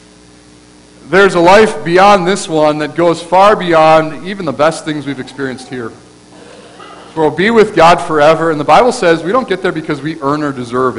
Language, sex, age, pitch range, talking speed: English, male, 40-59, 120-170 Hz, 190 wpm